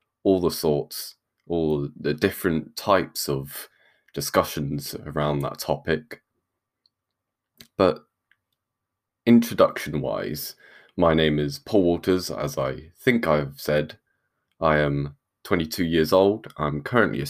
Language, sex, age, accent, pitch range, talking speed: English, male, 20-39, British, 75-80 Hz, 115 wpm